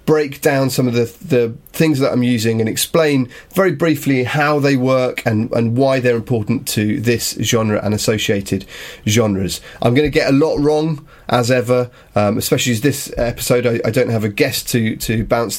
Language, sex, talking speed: English, male, 195 wpm